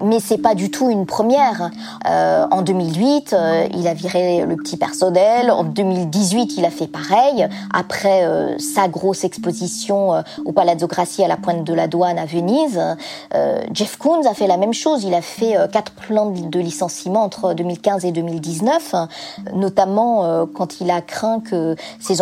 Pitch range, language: 175-220 Hz, French